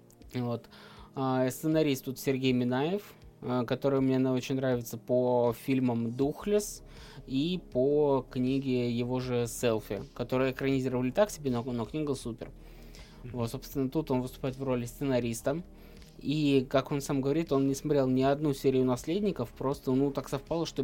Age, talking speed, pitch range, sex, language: 20-39, 155 wpm, 125-140 Hz, male, Russian